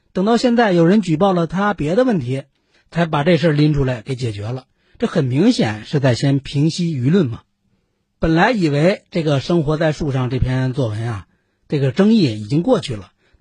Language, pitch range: Chinese, 125-185 Hz